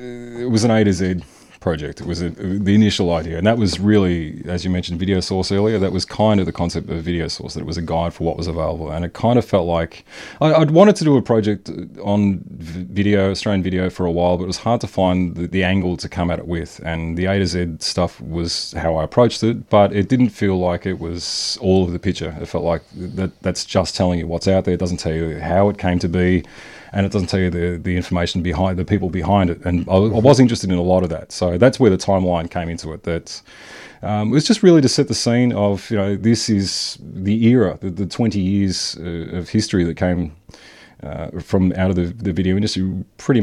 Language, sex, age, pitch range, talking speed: English, male, 30-49, 85-105 Hz, 255 wpm